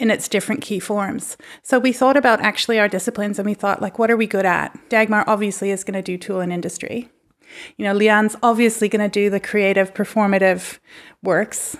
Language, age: English, 30-49